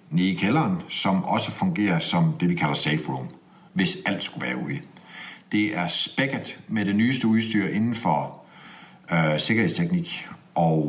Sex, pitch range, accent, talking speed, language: male, 100-155 Hz, native, 160 wpm, Danish